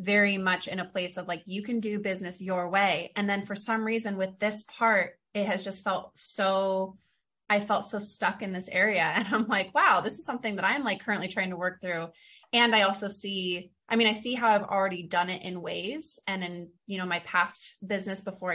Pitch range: 180-210 Hz